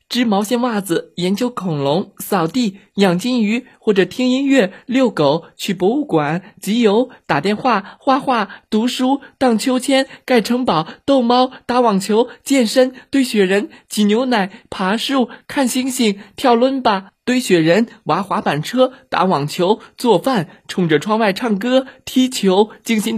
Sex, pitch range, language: male, 160-245 Hz, Chinese